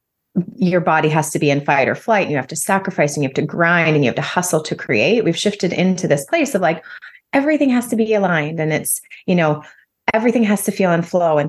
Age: 30-49